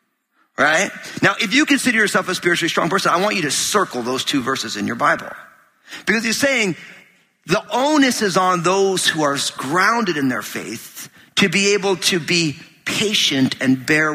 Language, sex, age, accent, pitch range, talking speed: English, male, 50-69, American, 145-210 Hz, 180 wpm